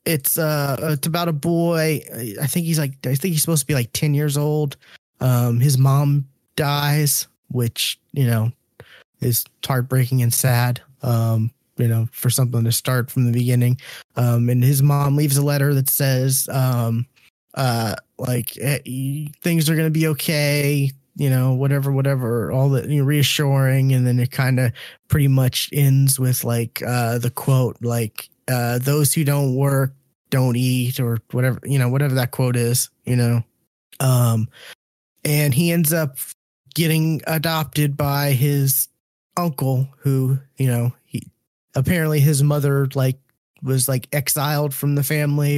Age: 20-39